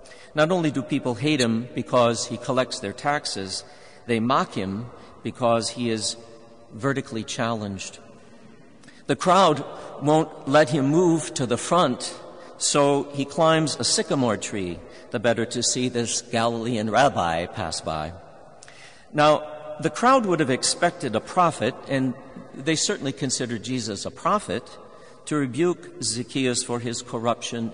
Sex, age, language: male, 50-69, English